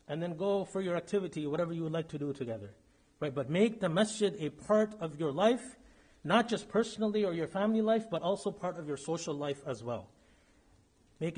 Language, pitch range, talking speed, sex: English, 150-215 Hz, 210 wpm, male